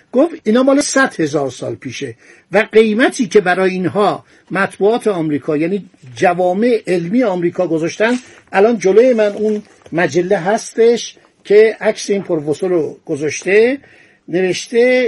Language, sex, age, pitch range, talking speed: Persian, male, 60-79, 175-230 Hz, 125 wpm